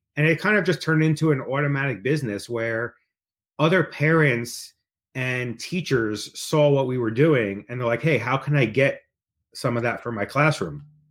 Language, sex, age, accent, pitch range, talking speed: English, male, 30-49, American, 115-150 Hz, 185 wpm